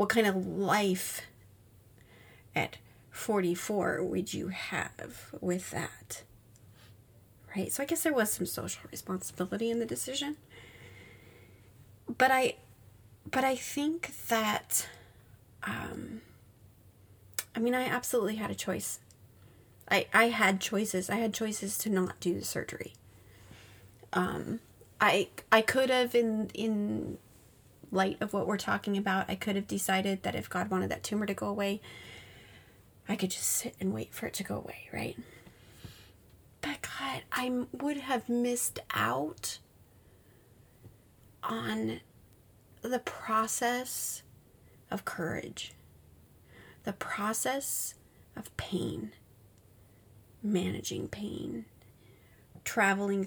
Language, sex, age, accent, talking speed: English, female, 30-49, American, 120 wpm